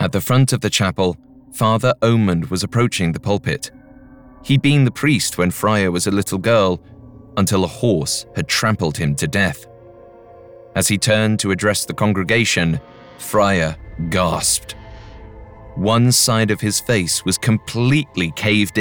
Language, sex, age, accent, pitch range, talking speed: English, male, 30-49, British, 95-115 Hz, 150 wpm